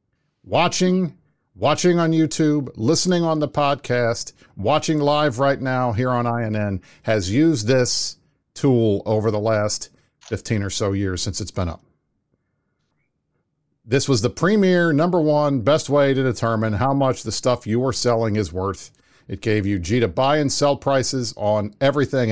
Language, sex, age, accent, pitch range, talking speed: English, male, 50-69, American, 110-145 Hz, 160 wpm